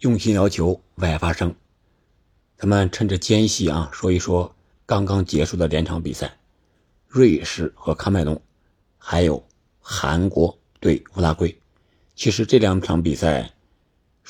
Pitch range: 80-100 Hz